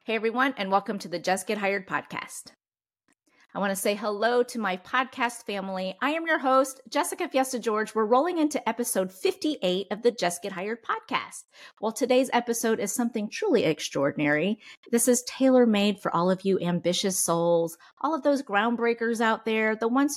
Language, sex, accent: English, female, American